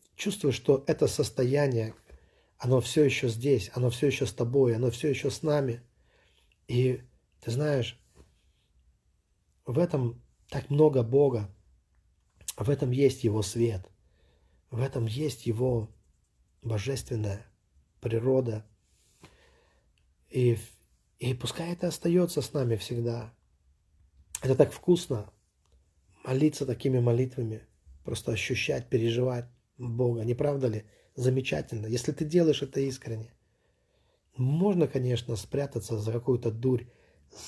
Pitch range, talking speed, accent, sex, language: 110-135 Hz, 110 wpm, native, male, Russian